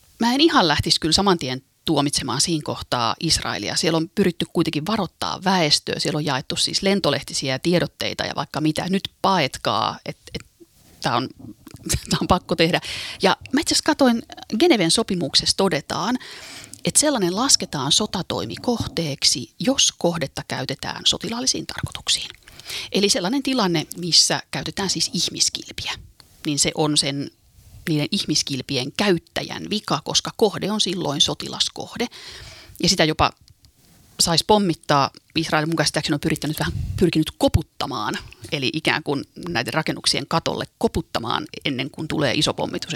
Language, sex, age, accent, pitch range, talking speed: Finnish, female, 30-49, native, 145-195 Hz, 135 wpm